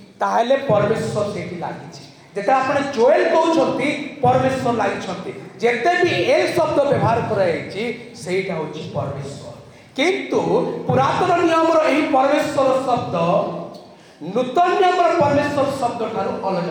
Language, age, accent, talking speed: Hindi, 40-59, native, 90 wpm